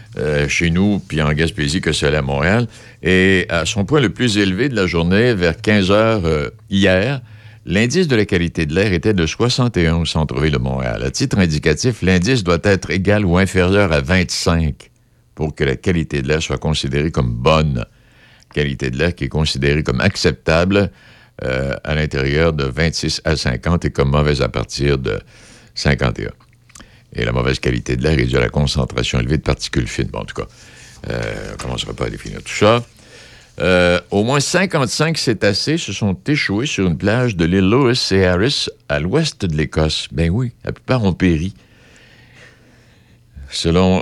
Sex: male